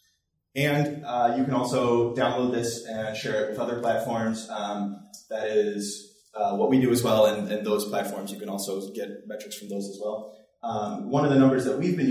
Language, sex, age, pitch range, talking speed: English, male, 20-39, 105-140 Hz, 215 wpm